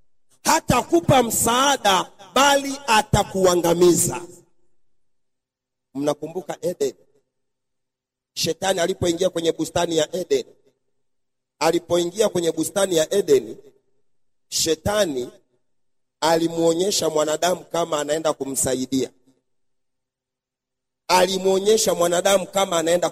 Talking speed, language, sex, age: 75 wpm, Swahili, male, 40-59